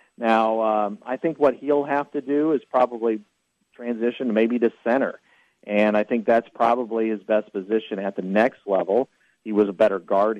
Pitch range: 105-125 Hz